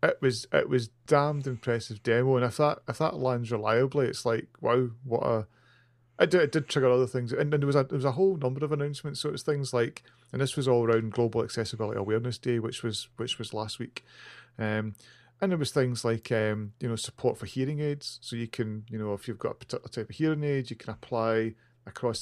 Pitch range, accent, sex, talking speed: 115-135 Hz, British, male, 240 wpm